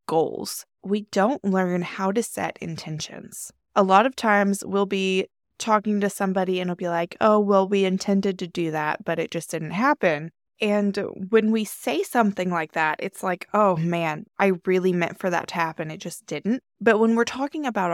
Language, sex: English, female